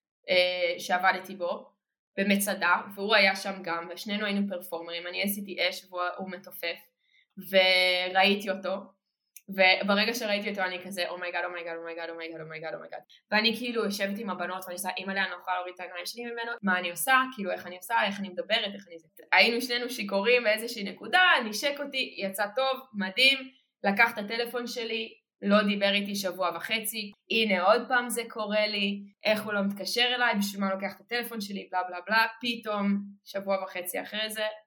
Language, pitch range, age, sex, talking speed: Hebrew, 185-235 Hz, 20-39, female, 170 wpm